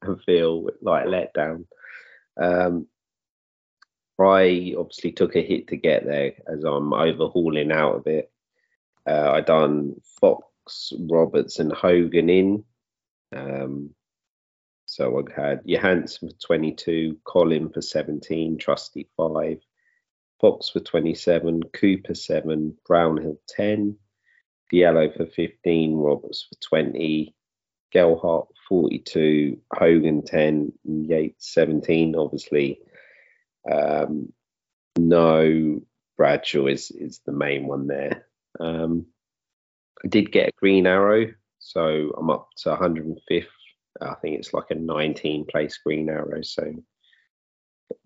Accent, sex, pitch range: British, male, 75-85 Hz